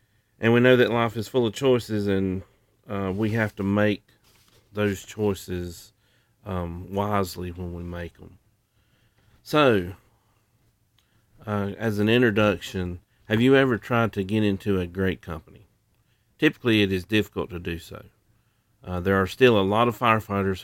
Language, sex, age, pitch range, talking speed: English, male, 40-59, 95-115 Hz, 155 wpm